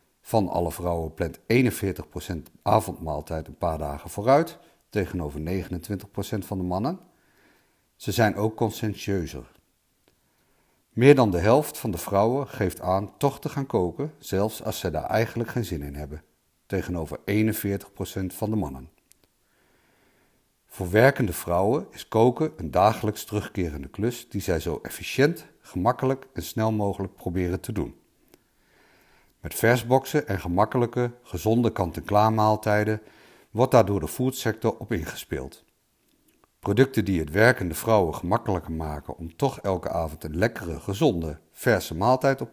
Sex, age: male, 50-69